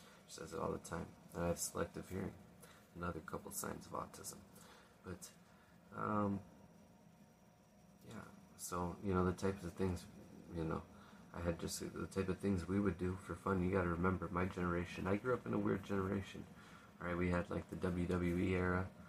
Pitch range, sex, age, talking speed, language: 85-95 Hz, male, 20-39, 185 wpm, English